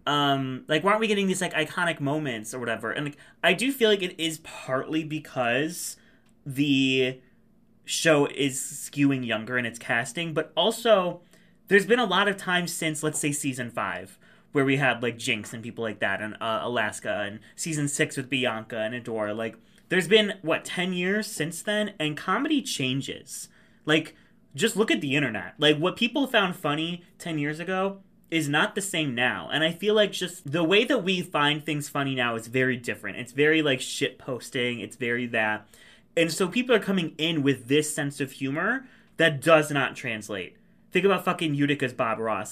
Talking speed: 195 wpm